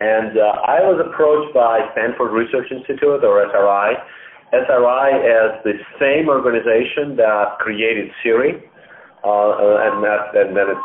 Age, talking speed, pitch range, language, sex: 40-59, 140 wpm, 105-155 Hz, English, male